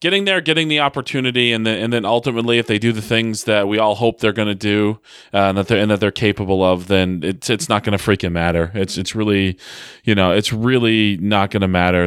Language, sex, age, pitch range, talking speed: English, male, 30-49, 95-120 Hz, 255 wpm